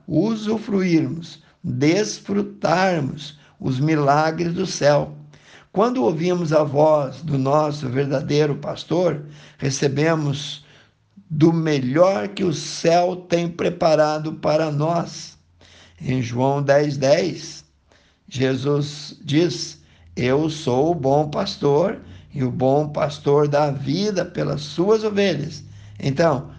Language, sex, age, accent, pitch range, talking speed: Portuguese, male, 60-79, Brazilian, 140-160 Hz, 100 wpm